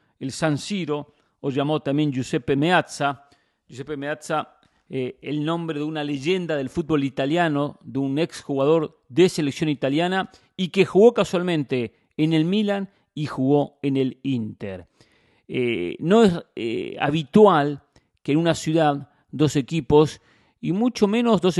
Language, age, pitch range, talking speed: English, 40-59, 135-175 Hz, 145 wpm